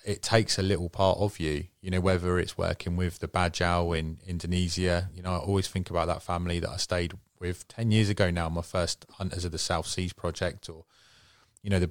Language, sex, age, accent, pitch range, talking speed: English, male, 30-49, British, 90-105 Hz, 225 wpm